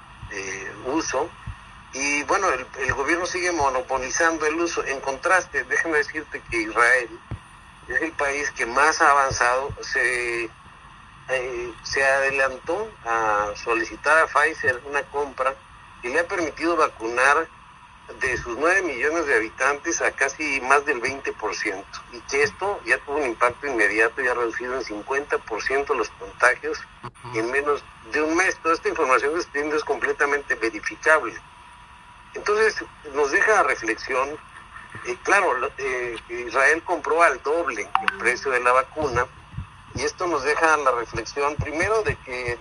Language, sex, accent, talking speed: Spanish, male, Mexican, 145 wpm